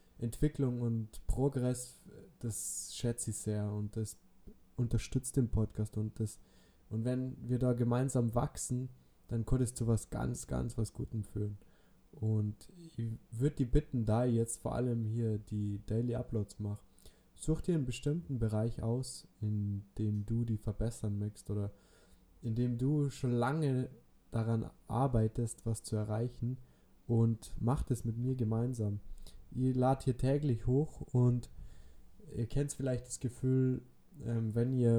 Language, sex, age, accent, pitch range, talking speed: German, male, 20-39, German, 110-125 Hz, 145 wpm